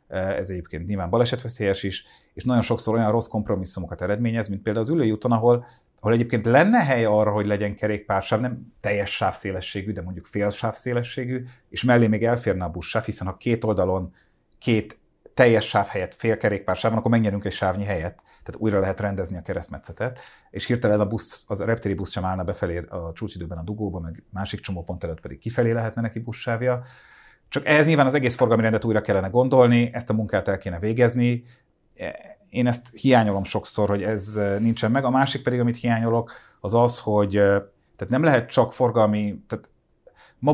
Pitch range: 100-120 Hz